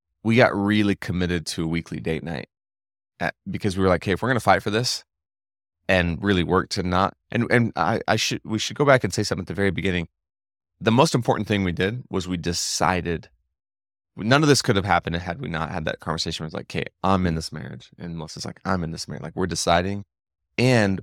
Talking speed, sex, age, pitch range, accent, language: 235 wpm, male, 20-39, 85-100 Hz, American, English